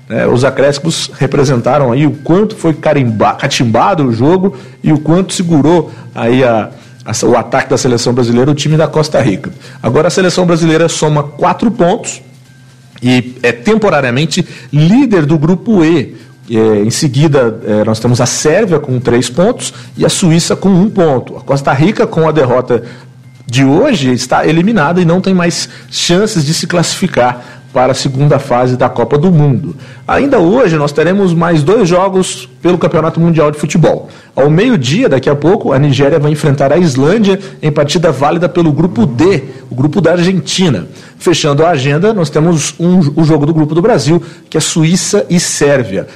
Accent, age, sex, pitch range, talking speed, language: Brazilian, 40-59, male, 130-175 Hz, 180 wpm, English